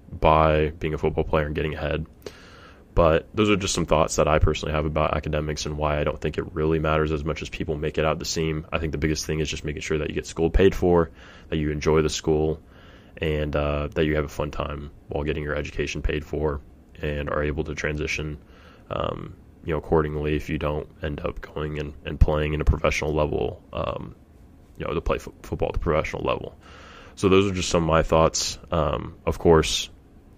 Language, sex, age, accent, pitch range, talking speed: English, male, 20-39, American, 75-80 Hz, 225 wpm